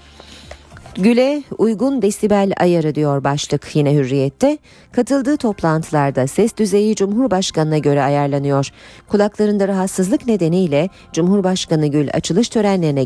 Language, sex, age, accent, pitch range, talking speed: Turkish, female, 40-59, native, 145-215 Hz, 100 wpm